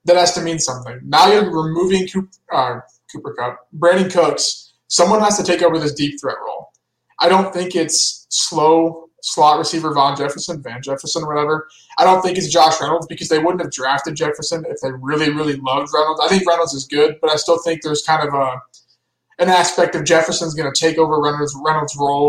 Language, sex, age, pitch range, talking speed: English, male, 20-39, 140-170 Hz, 210 wpm